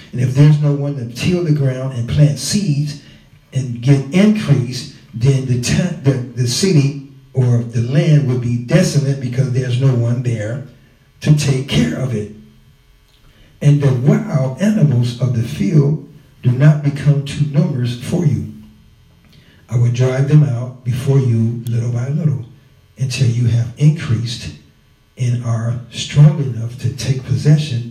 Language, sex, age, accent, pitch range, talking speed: English, male, 60-79, American, 120-145 Hz, 155 wpm